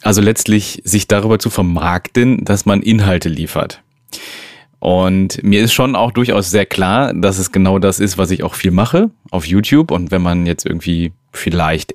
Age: 30-49